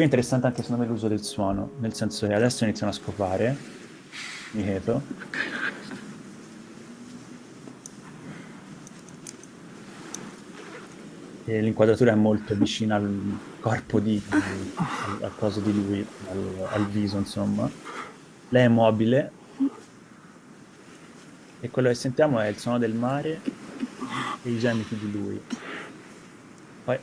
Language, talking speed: Italian, 120 wpm